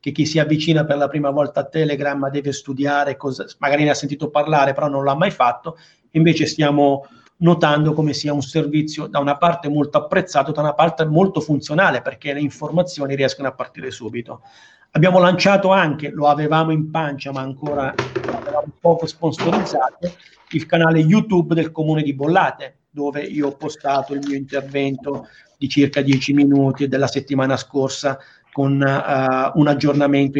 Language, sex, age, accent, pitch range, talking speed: Italian, male, 40-59, native, 140-160 Hz, 165 wpm